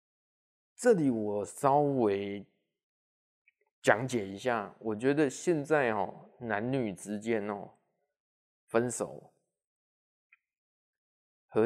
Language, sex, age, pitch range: Chinese, male, 20-39, 115-170 Hz